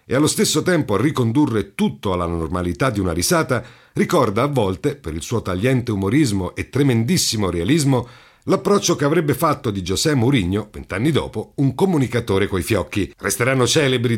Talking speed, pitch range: 160 wpm, 105-150 Hz